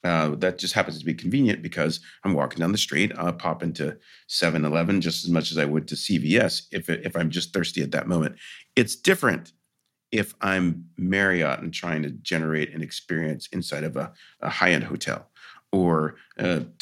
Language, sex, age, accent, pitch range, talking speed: English, male, 40-59, American, 80-105 Hz, 185 wpm